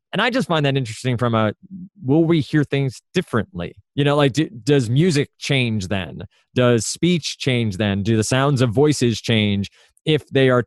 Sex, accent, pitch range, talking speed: male, American, 110-140 Hz, 185 wpm